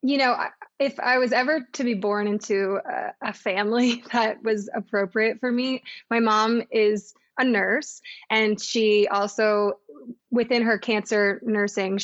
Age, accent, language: 20-39, American, English